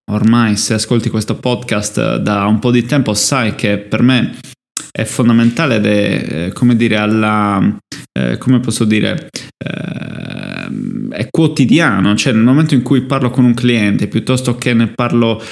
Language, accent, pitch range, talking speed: Italian, native, 105-125 Hz, 140 wpm